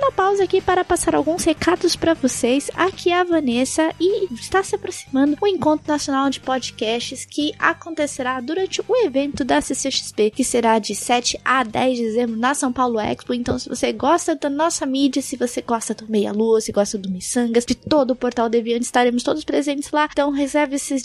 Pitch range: 245-325 Hz